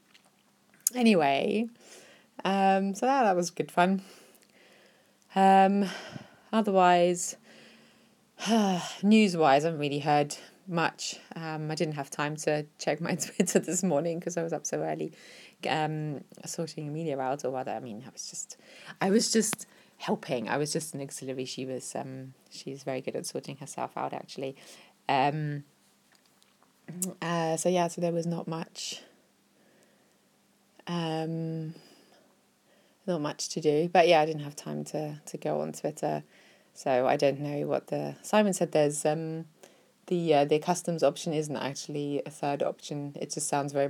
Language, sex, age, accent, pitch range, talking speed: English, female, 20-39, British, 140-180 Hz, 155 wpm